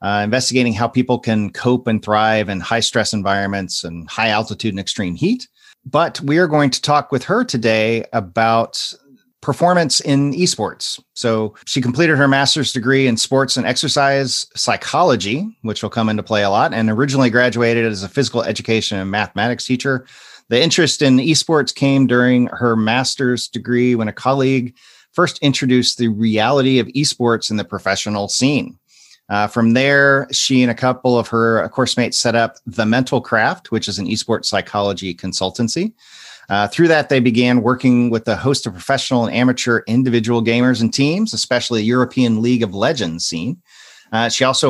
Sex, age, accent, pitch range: male, 40-59, American, 110-135 Hz